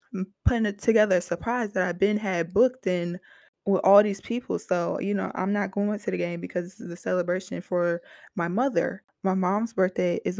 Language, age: English, 20-39